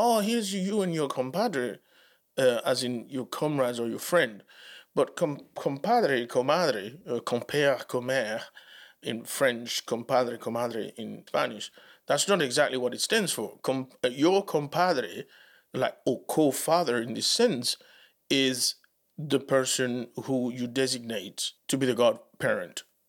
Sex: male